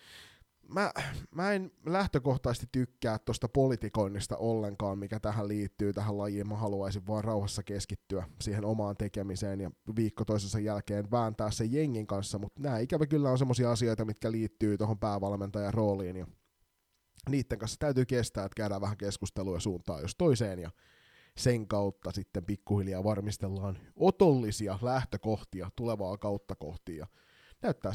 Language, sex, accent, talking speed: Finnish, male, native, 140 wpm